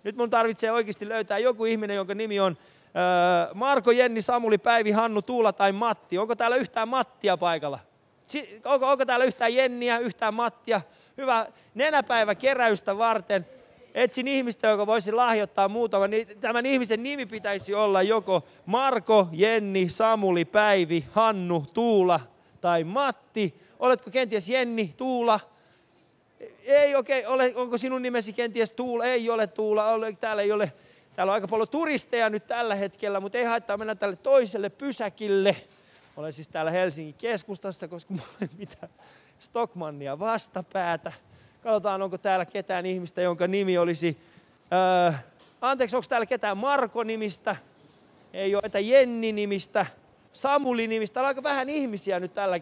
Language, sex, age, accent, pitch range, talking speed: Finnish, male, 30-49, native, 190-240 Hz, 140 wpm